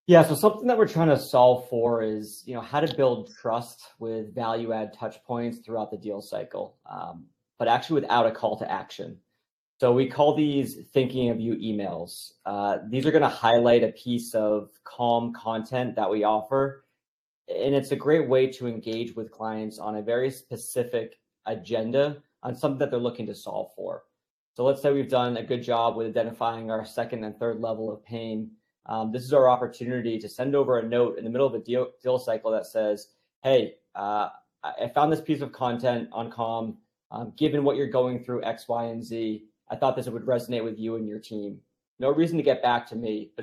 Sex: male